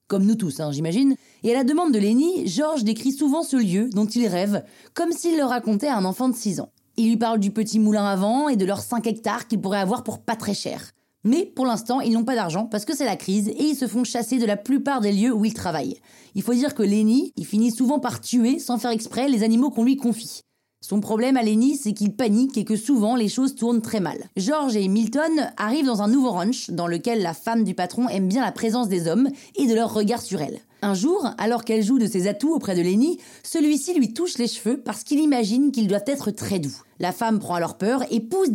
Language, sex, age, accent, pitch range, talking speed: French, female, 30-49, French, 210-265 Hz, 255 wpm